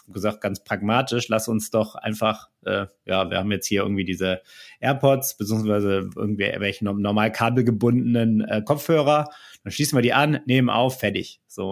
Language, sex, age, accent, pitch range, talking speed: German, male, 30-49, German, 110-135 Hz, 160 wpm